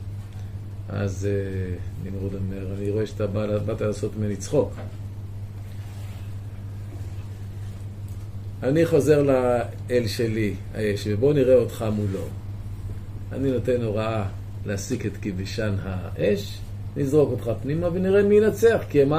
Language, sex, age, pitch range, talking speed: Hebrew, male, 40-59, 100-115 Hz, 105 wpm